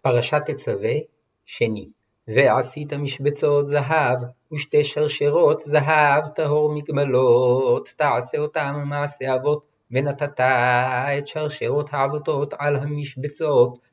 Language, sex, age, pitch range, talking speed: Hebrew, male, 50-69, 140-155 Hz, 90 wpm